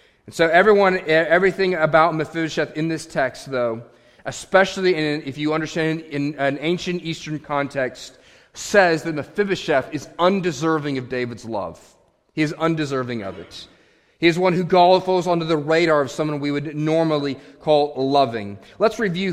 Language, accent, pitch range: English, American, 150-180 Hz